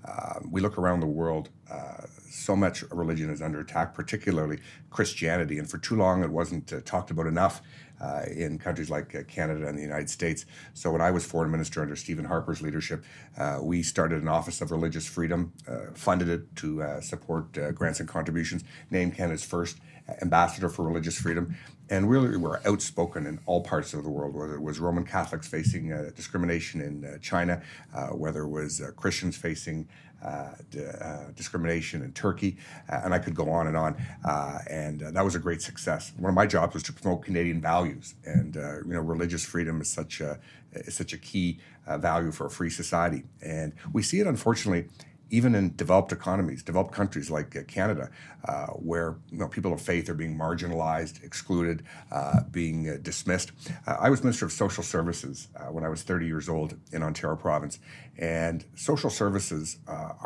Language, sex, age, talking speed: English, male, 60-79, 195 wpm